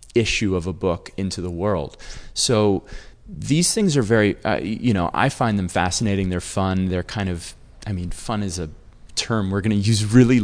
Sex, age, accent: male, 30-49, American